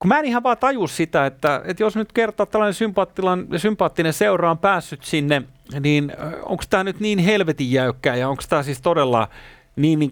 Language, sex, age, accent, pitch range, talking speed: Finnish, male, 30-49, native, 110-155 Hz, 190 wpm